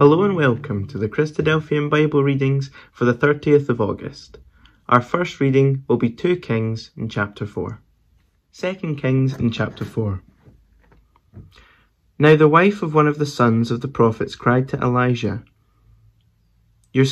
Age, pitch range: 20-39, 110-135 Hz